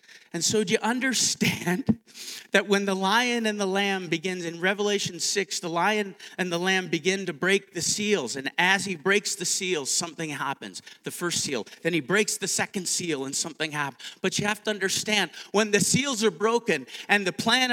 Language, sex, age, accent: English, male, 40-59, American